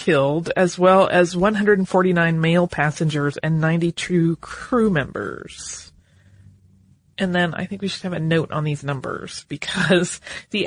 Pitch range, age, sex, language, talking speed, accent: 155-185 Hz, 30-49, female, English, 140 wpm, American